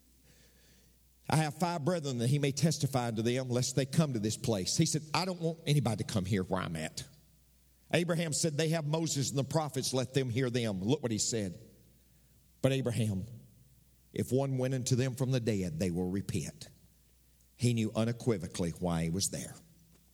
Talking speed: 190 wpm